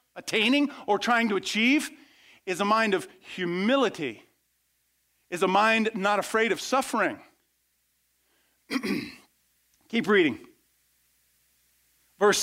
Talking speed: 95 wpm